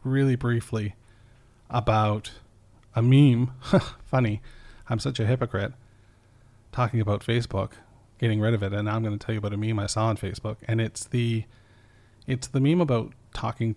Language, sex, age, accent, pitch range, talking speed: English, male, 40-59, American, 105-120 Hz, 170 wpm